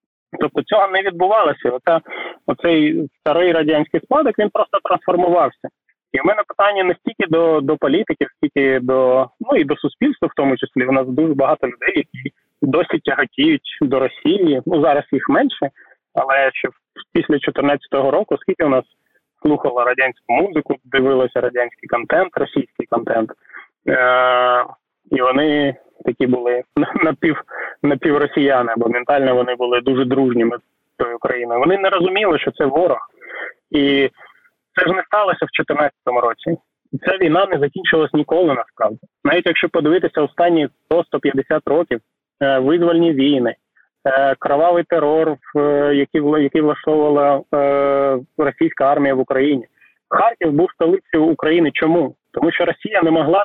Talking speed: 135 wpm